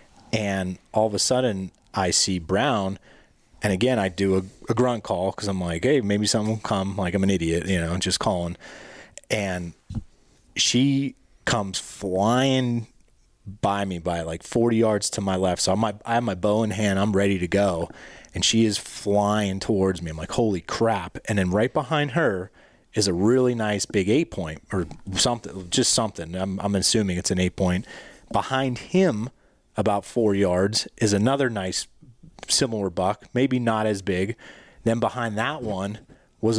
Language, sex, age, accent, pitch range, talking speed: English, male, 30-49, American, 95-115 Hz, 180 wpm